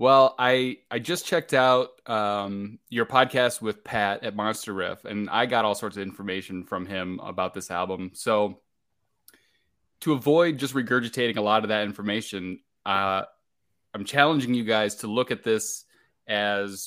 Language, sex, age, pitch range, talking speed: English, male, 20-39, 95-120 Hz, 165 wpm